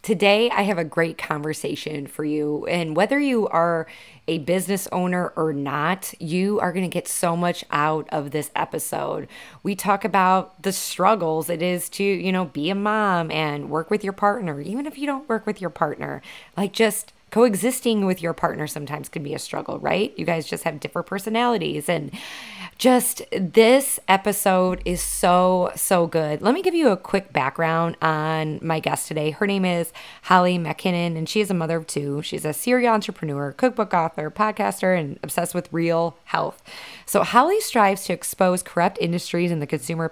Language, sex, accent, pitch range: English, female, American, 160-205 Hz